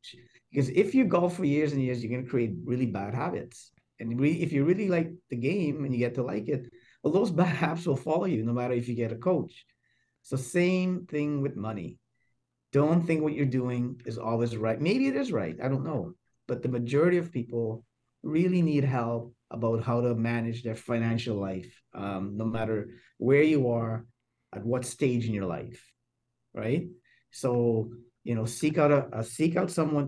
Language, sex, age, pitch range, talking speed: English, male, 30-49, 115-145 Hz, 200 wpm